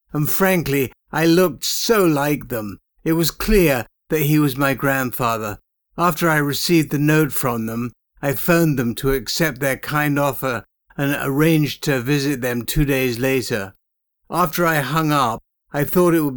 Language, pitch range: English, 130-150 Hz